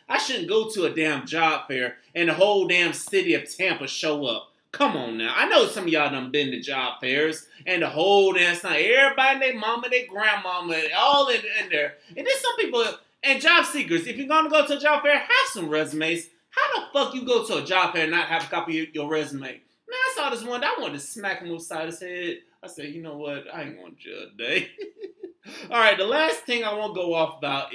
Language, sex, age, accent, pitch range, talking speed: English, male, 20-39, American, 155-245 Hz, 240 wpm